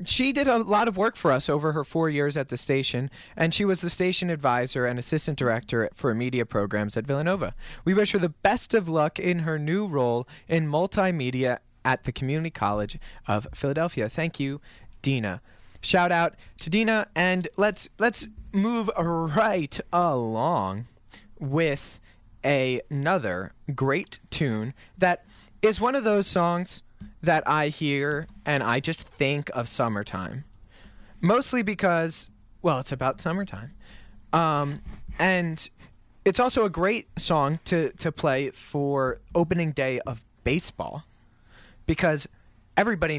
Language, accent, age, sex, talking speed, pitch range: English, American, 20-39, male, 145 wpm, 125-185 Hz